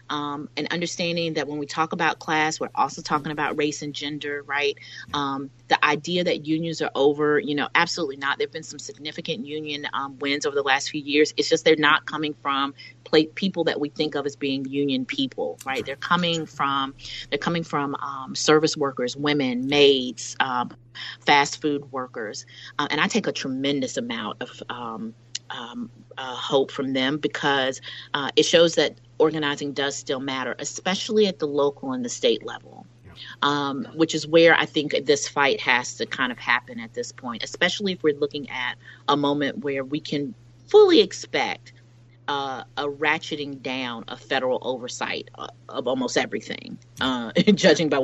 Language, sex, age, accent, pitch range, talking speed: English, female, 30-49, American, 130-155 Hz, 180 wpm